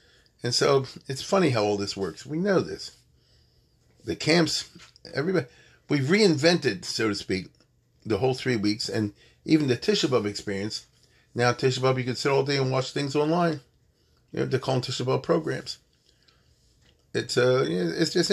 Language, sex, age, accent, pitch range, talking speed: English, male, 40-59, American, 120-165 Hz, 165 wpm